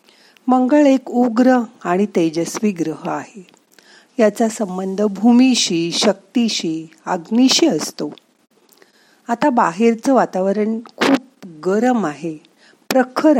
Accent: native